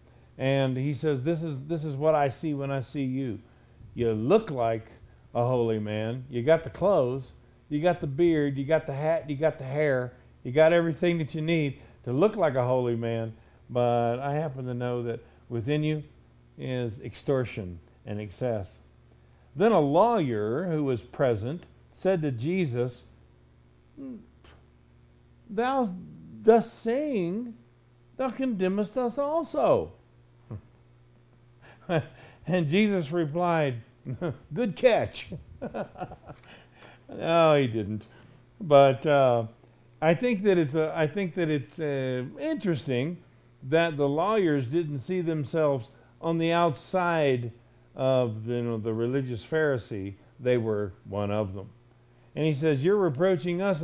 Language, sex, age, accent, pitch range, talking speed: English, male, 50-69, American, 120-165 Hz, 135 wpm